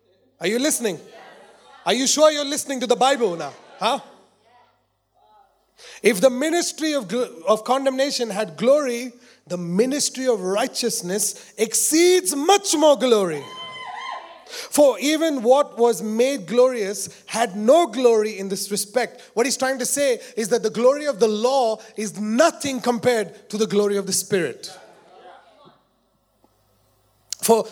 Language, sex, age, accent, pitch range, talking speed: English, male, 30-49, Indian, 200-270 Hz, 135 wpm